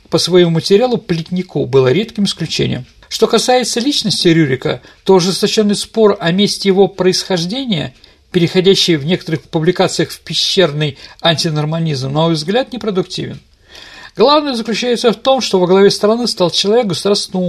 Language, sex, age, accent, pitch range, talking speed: Russian, male, 50-69, native, 155-210 Hz, 135 wpm